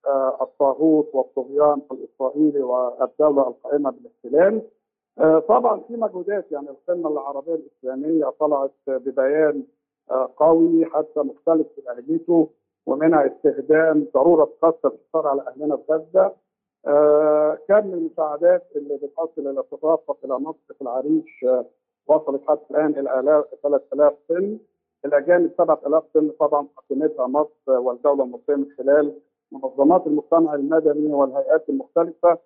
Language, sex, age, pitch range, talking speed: Arabic, male, 50-69, 145-180 Hz, 110 wpm